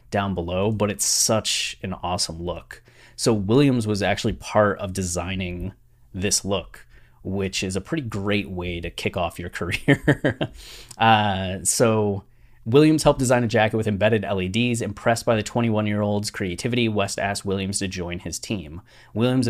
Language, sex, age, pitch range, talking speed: English, male, 20-39, 95-115 Hz, 155 wpm